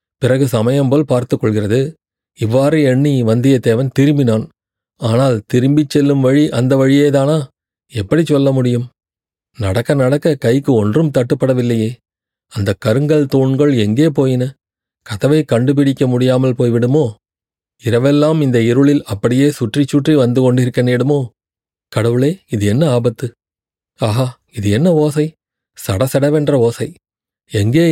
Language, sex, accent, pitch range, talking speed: Tamil, male, native, 115-145 Hz, 105 wpm